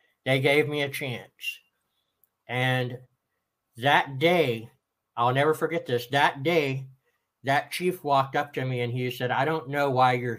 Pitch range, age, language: 125-155 Hz, 60-79, English